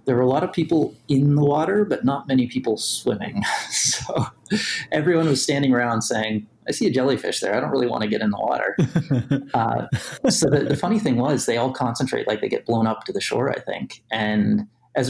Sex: male